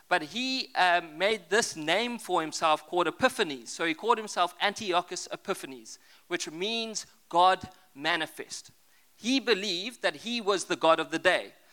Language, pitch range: English, 180-245 Hz